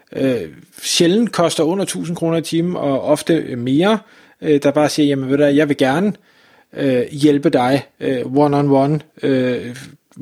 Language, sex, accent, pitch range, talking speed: Danish, male, native, 140-170 Hz, 160 wpm